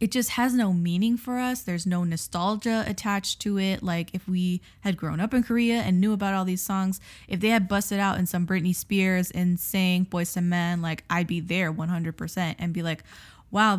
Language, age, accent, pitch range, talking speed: English, 10-29, American, 180-225 Hz, 220 wpm